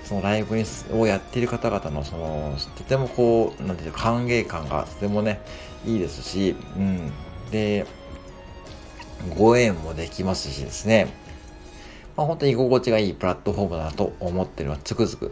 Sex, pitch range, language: male, 75-110 Hz, Japanese